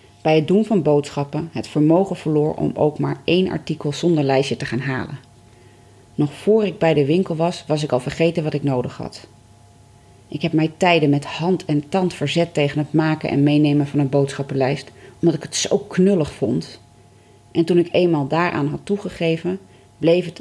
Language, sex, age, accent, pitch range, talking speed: Dutch, female, 30-49, Dutch, 120-170 Hz, 190 wpm